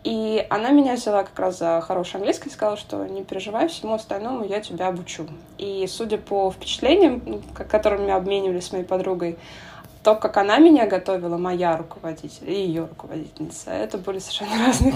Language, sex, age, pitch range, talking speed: Russian, female, 20-39, 180-220 Hz, 170 wpm